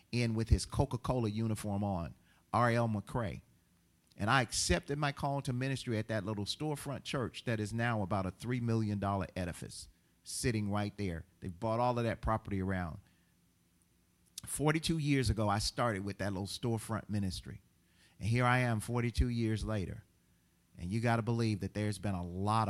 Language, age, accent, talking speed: English, 40-59, American, 175 wpm